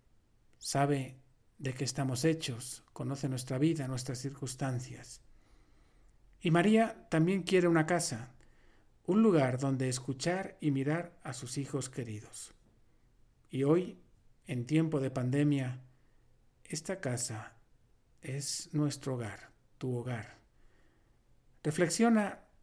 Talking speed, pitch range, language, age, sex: 105 wpm, 125-160 Hz, Spanish, 50-69, male